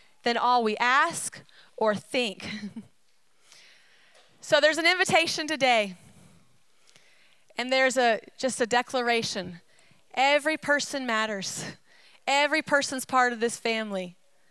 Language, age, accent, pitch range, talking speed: English, 30-49, American, 220-275 Hz, 110 wpm